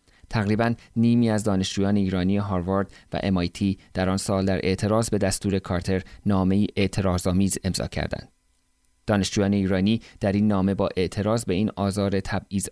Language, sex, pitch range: Persian, male, 95-105 Hz